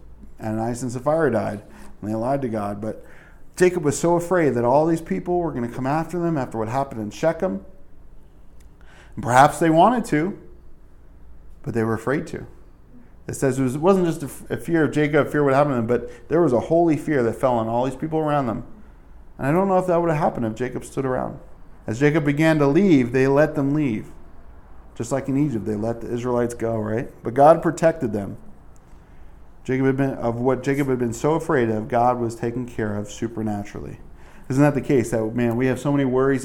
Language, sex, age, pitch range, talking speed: English, male, 40-59, 110-145 Hz, 225 wpm